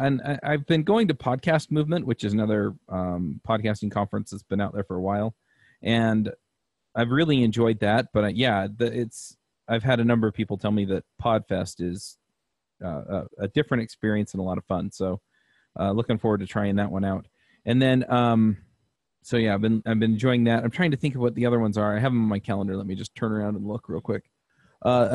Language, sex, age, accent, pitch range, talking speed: English, male, 30-49, American, 100-120 Hz, 230 wpm